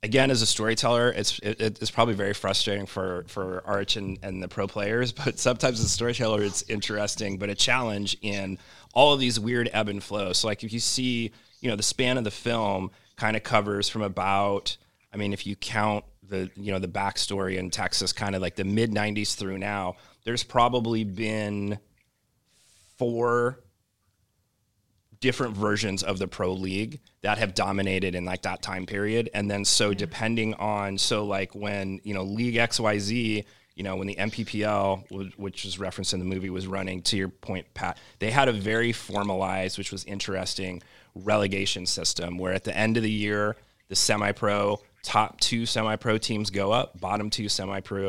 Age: 30-49